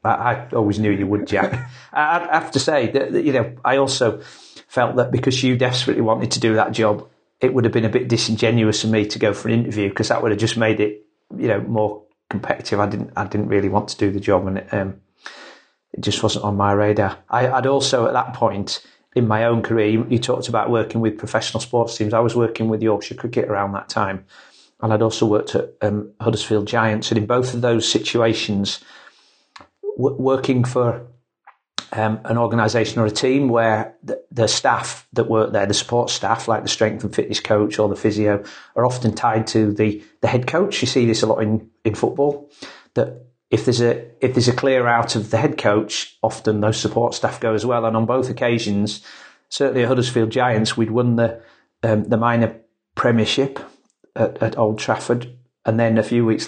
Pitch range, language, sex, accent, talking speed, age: 105-120 Hz, English, male, British, 205 wpm, 40-59